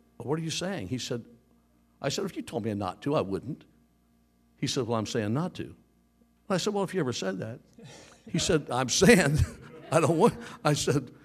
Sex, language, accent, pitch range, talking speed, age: male, English, American, 80-115 Hz, 215 wpm, 60-79